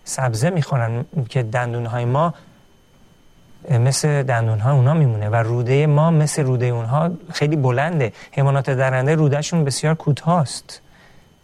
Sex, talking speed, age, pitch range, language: male, 125 wpm, 40-59, 115-150 Hz, Persian